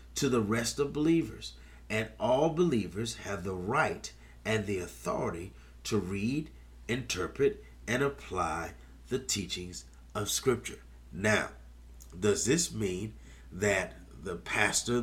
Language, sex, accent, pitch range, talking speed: English, male, American, 80-120 Hz, 120 wpm